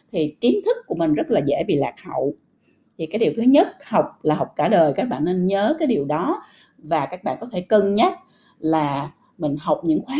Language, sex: Vietnamese, female